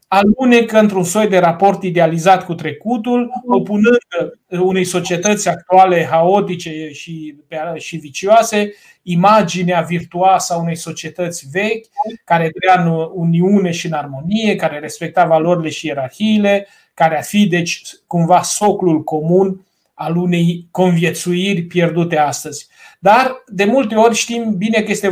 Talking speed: 125 wpm